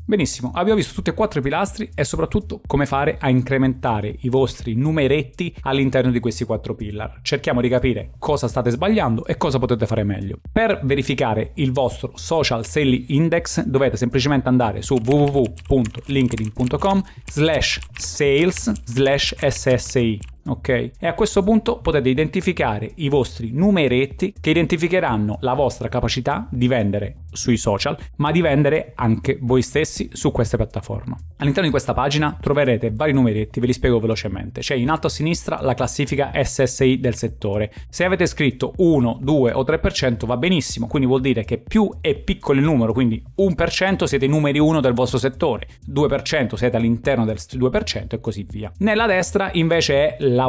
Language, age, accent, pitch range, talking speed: Italian, 30-49, native, 120-150 Hz, 165 wpm